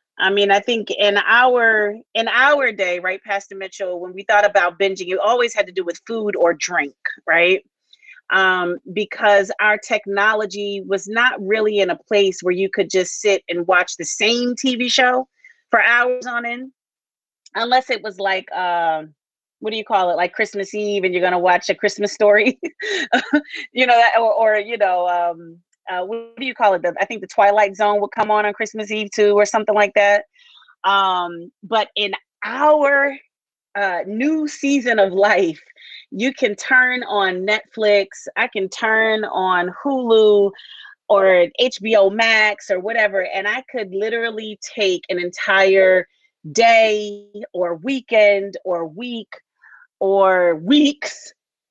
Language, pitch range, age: English, 190-240 Hz, 30-49